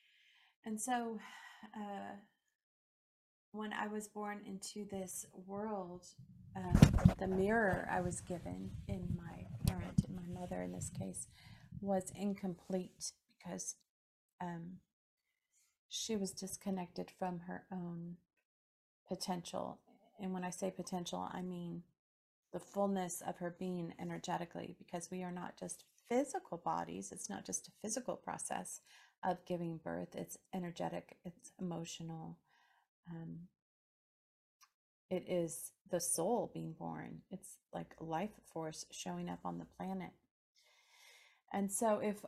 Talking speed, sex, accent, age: 125 wpm, female, American, 30-49